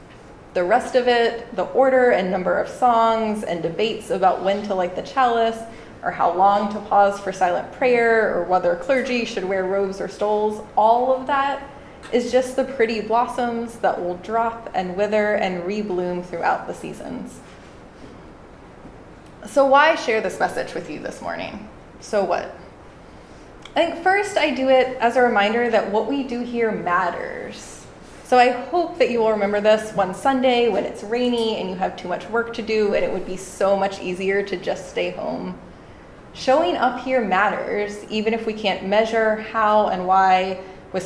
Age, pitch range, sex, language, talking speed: 20-39, 195-255 Hz, female, English, 180 wpm